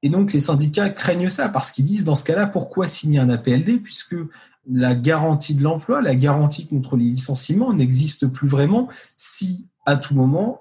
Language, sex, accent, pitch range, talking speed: French, male, French, 130-160 Hz, 185 wpm